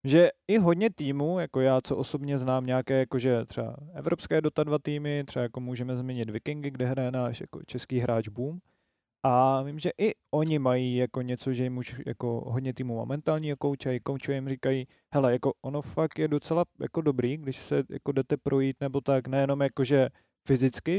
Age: 20-39